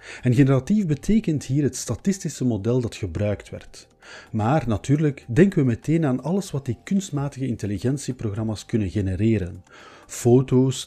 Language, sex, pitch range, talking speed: Dutch, male, 105-145 Hz, 130 wpm